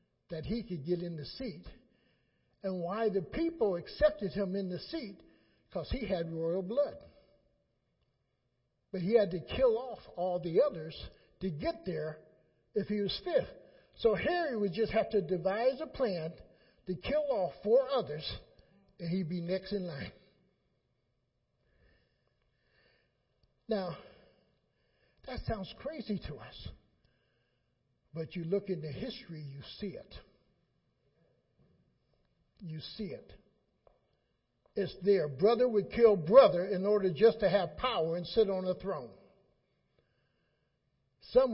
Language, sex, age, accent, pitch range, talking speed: English, male, 60-79, American, 170-220 Hz, 135 wpm